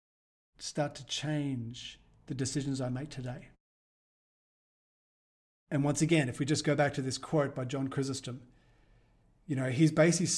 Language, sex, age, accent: English, male, 40-59, Australian